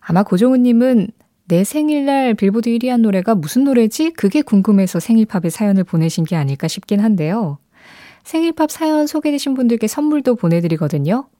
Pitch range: 165-240 Hz